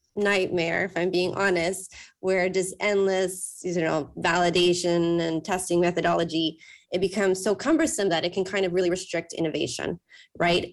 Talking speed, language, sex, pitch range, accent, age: 150 wpm, English, female, 170-195 Hz, American, 20-39